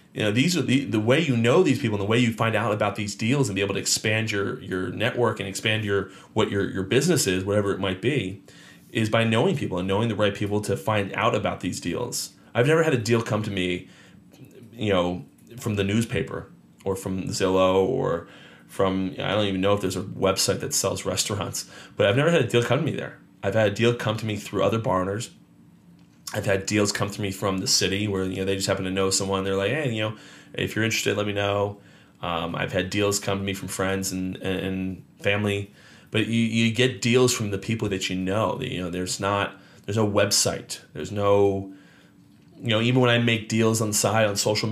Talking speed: 240 wpm